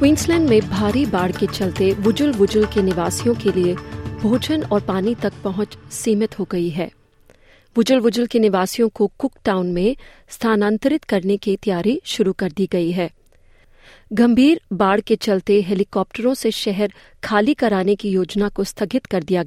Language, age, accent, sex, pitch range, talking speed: Hindi, 30-49, native, female, 190-245 Hz, 165 wpm